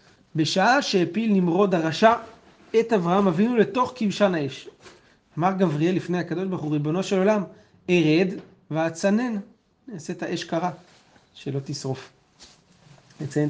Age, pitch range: 30-49, 150-190 Hz